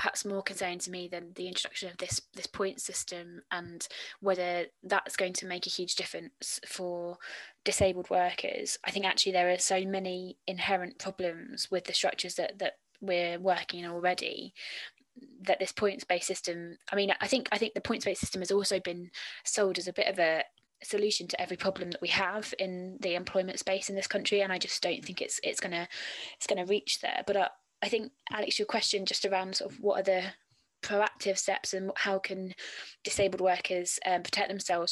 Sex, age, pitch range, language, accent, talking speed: female, 20-39, 180-200 Hz, English, British, 195 wpm